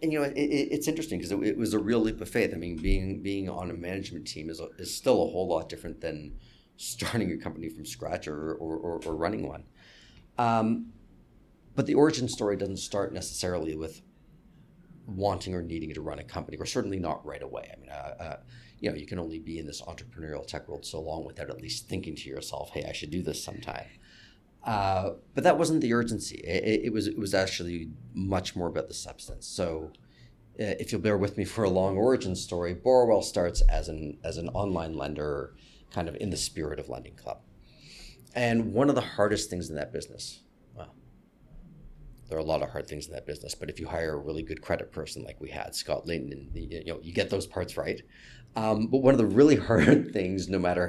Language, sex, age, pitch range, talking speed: English, male, 40-59, 80-110 Hz, 225 wpm